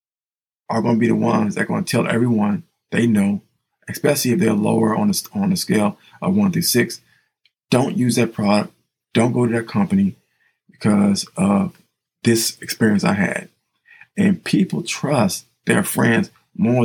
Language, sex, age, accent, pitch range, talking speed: English, male, 50-69, American, 120-200 Hz, 170 wpm